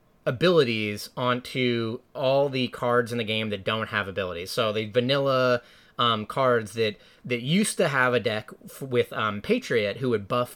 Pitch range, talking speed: 110-135 Hz, 170 wpm